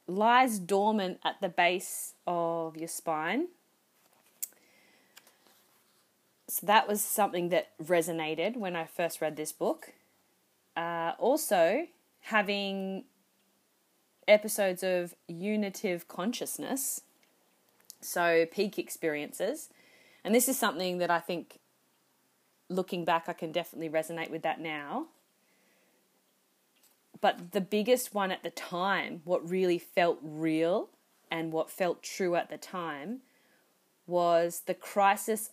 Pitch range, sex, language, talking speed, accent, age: 170-210 Hz, female, English, 115 wpm, Australian, 20-39